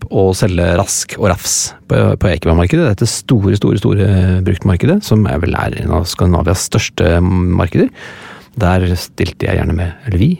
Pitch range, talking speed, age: 95-130 Hz, 155 wpm, 30-49